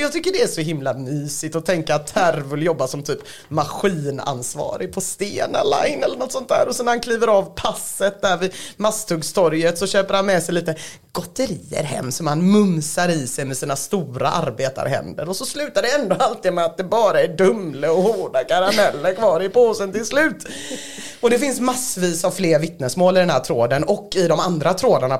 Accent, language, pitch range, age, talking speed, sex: Swedish, English, 150-205 Hz, 30-49, 200 wpm, female